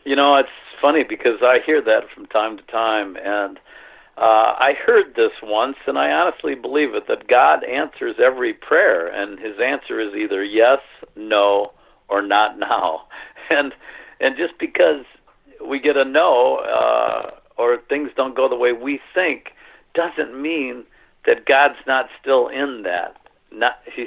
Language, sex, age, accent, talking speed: English, male, 60-79, American, 160 wpm